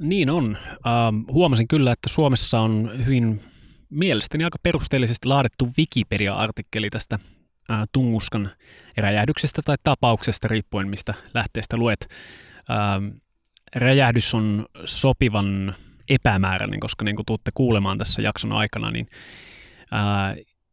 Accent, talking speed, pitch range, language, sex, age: native, 115 wpm, 105-130 Hz, Finnish, male, 20-39